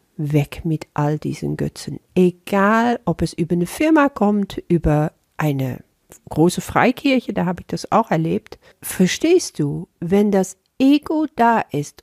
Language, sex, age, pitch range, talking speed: German, female, 50-69, 160-215 Hz, 145 wpm